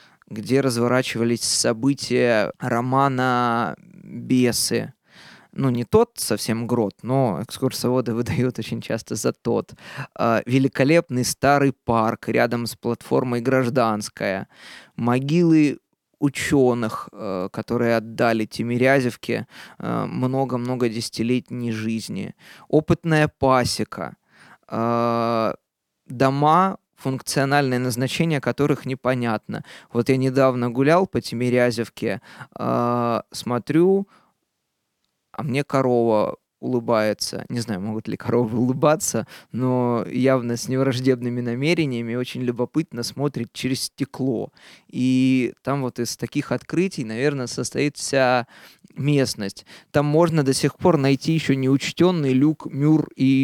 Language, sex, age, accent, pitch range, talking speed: Russian, male, 20-39, native, 120-135 Hz, 105 wpm